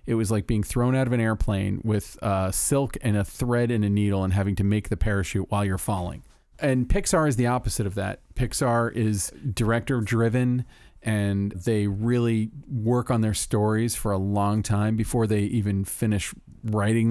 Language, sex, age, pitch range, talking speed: English, male, 40-59, 100-115 Hz, 190 wpm